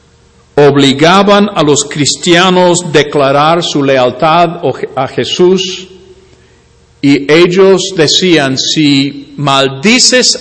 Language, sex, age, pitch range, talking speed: English, male, 50-69, 130-180 Hz, 85 wpm